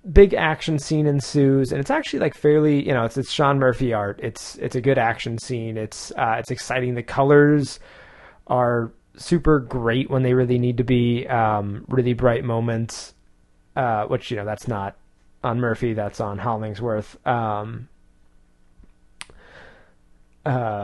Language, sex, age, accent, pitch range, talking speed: English, male, 20-39, American, 110-140 Hz, 155 wpm